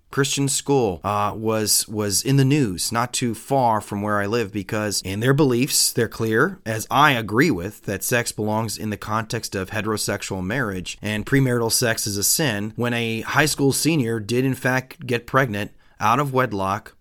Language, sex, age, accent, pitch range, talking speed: English, male, 30-49, American, 105-140 Hz, 185 wpm